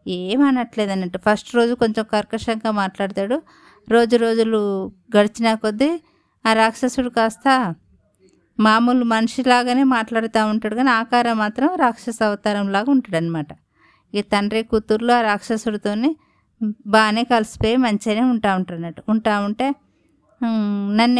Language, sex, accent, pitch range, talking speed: Telugu, female, native, 210-250 Hz, 110 wpm